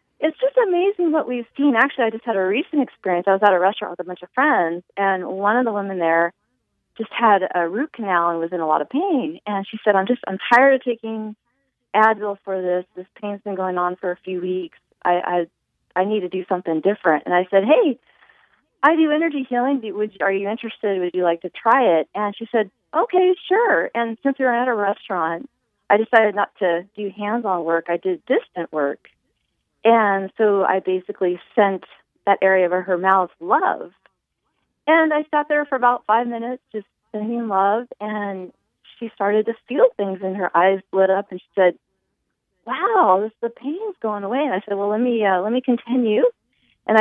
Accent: American